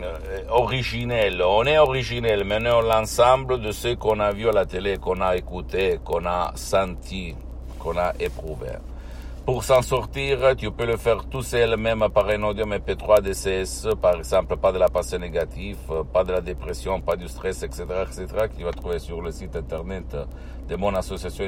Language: Italian